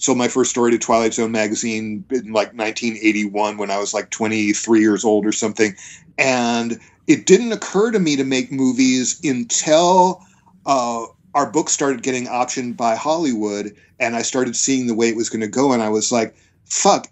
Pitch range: 115-145 Hz